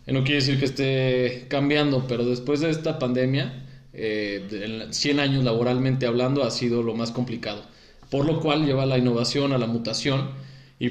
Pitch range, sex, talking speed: 120-135 Hz, male, 175 wpm